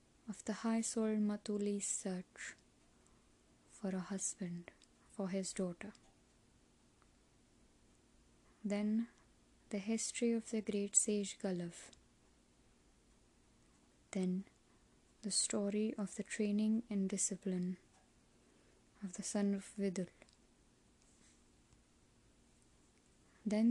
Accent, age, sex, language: Indian, 20-39, female, English